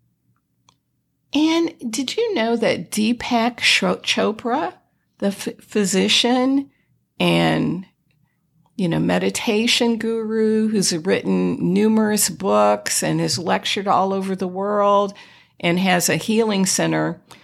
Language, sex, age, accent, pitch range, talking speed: English, female, 50-69, American, 180-245 Hz, 105 wpm